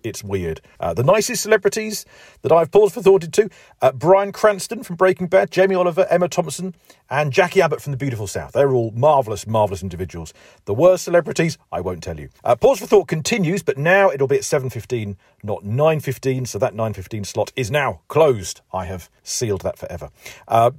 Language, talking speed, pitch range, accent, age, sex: English, 195 wpm, 105-175 Hz, British, 40-59, male